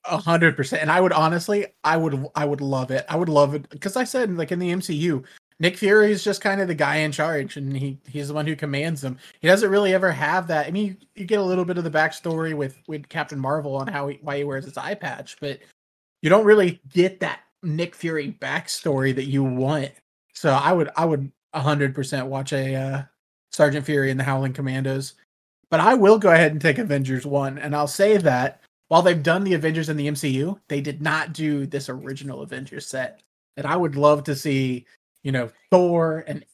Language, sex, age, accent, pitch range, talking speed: English, male, 30-49, American, 140-175 Hz, 230 wpm